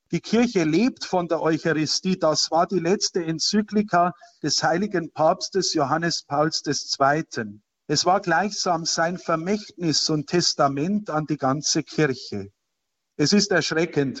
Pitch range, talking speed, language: 150-185 Hz, 130 wpm, German